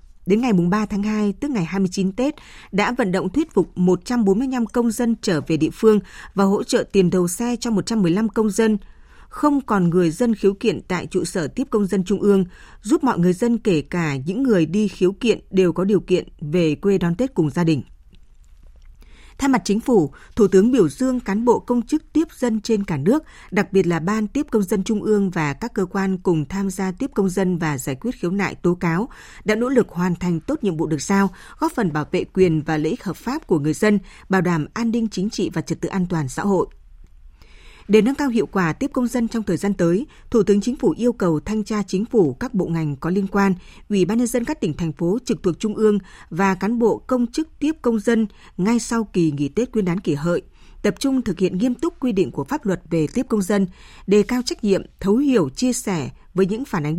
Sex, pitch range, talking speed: female, 175-230 Hz, 240 wpm